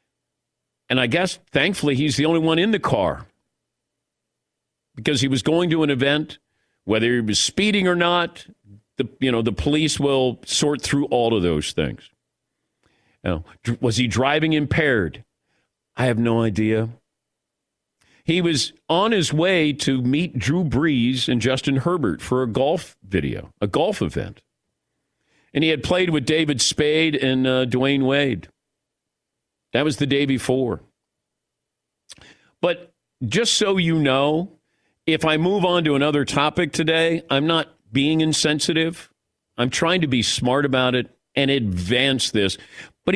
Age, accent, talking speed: 50-69, American, 150 wpm